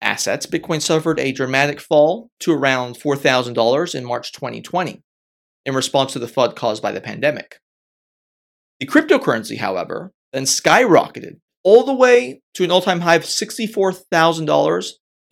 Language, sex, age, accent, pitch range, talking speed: English, male, 30-49, American, 130-180 Hz, 135 wpm